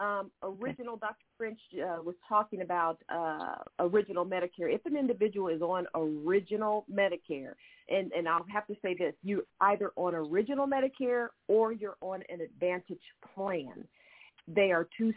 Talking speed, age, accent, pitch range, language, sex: 155 wpm, 50-69, American, 175-225 Hz, English, female